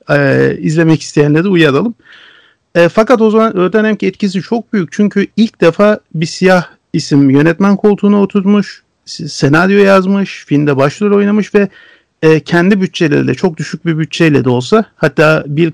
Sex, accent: male, native